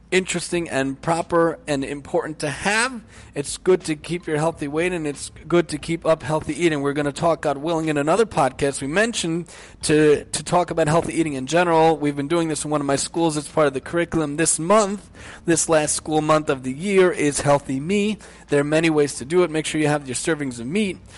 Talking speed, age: 230 wpm, 30-49